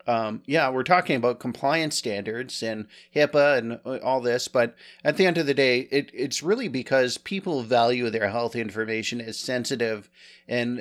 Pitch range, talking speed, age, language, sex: 115-135 Hz, 170 wpm, 40-59, English, male